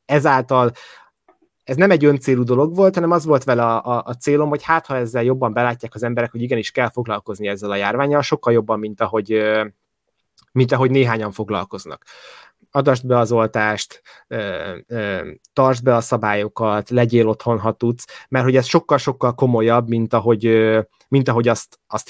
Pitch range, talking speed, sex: 115-140 Hz, 160 wpm, male